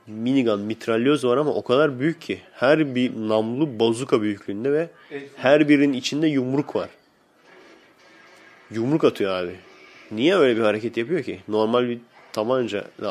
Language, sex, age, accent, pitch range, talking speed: Turkish, male, 30-49, native, 105-135 Hz, 140 wpm